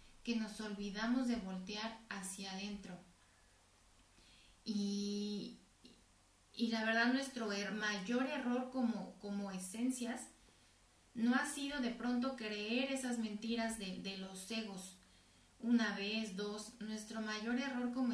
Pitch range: 195-240 Hz